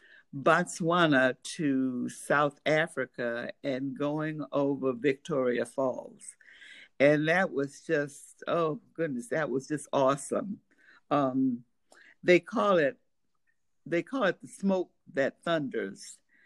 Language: English